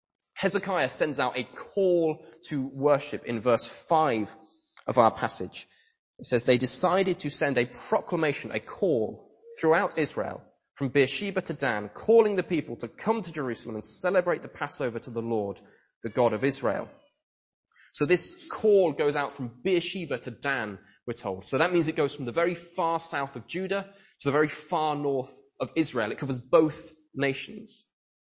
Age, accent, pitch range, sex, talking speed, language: 20-39, British, 130-175 Hz, male, 170 wpm, English